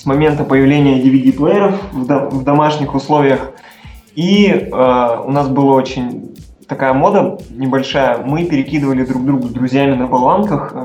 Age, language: 20-39, Russian